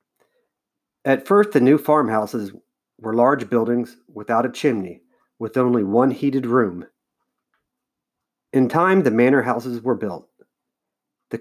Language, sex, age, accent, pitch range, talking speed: English, male, 50-69, American, 110-140 Hz, 125 wpm